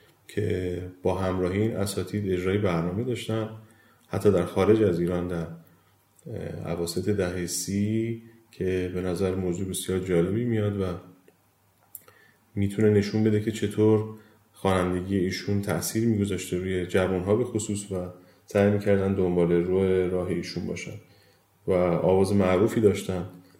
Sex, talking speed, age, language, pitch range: male, 125 wpm, 30-49, Persian, 90-110 Hz